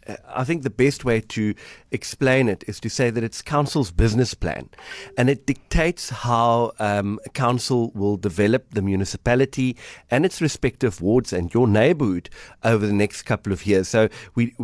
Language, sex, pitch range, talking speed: English, male, 105-135 Hz, 170 wpm